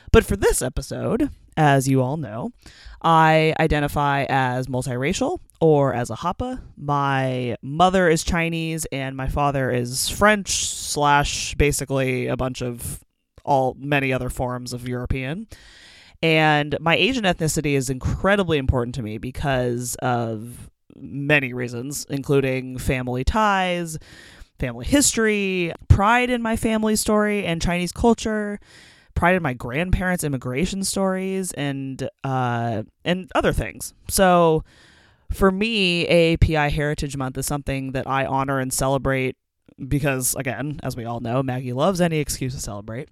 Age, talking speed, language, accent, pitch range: 20-39, 135 wpm, English, American, 130-175 Hz